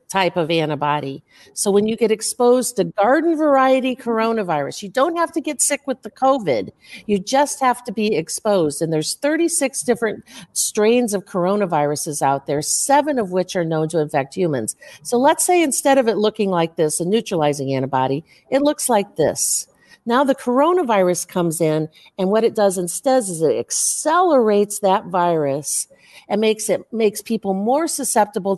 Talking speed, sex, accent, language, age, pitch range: 170 wpm, female, American, English, 50-69, 165-235 Hz